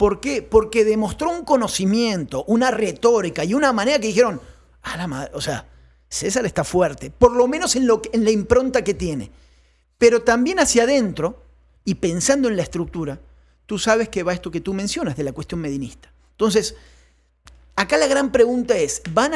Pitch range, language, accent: 140-220 Hz, Spanish, Argentinian